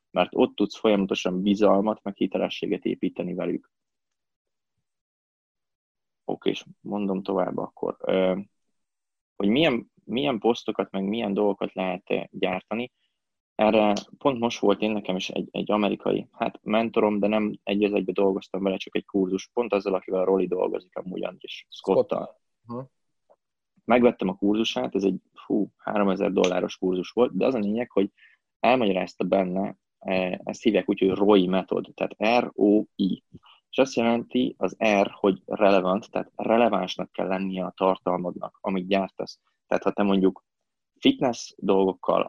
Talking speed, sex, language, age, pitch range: 140 wpm, male, Hungarian, 20-39, 95-110 Hz